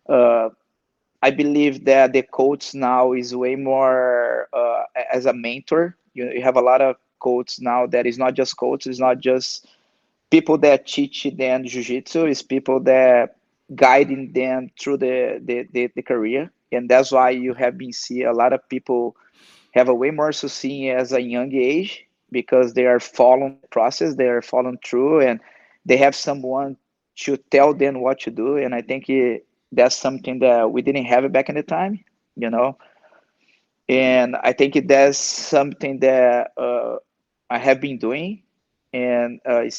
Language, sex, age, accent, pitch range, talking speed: English, male, 20-39, Brazilian, 125-140 Hz, 180 wpm